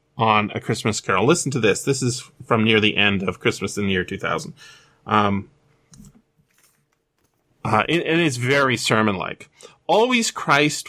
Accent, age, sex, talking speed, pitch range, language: American, 30-49, male, 150 wpm, 110-150 Hz, English